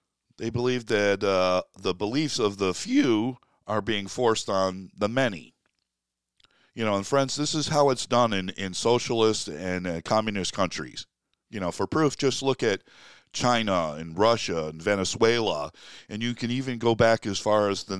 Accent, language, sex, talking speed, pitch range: American, English, male, 175 wpm, 95-120 Hz